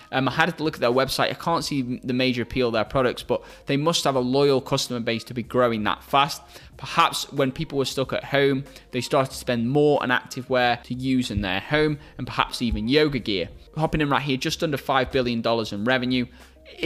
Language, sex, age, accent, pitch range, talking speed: English, male, 20-39, British, 120-140 Hz, 235 wpm